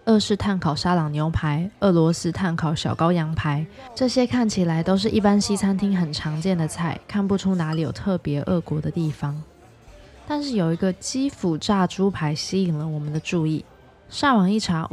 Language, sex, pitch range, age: Chinese, female, 160-200 Hz, 20-39